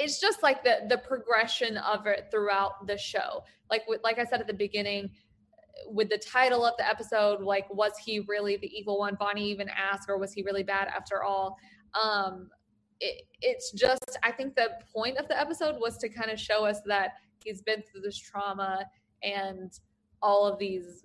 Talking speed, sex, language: 195 wpm, female, English